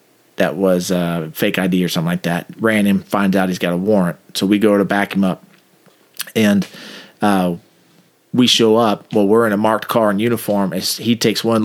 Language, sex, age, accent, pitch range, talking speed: English, male, 30-49, American, 100-120 Hz, 205 wpm